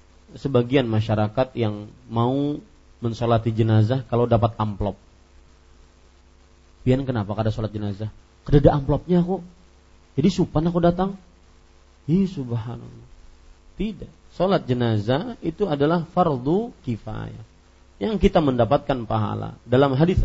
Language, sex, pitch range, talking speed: Malay, male, 95-145 Hz, 105 wpm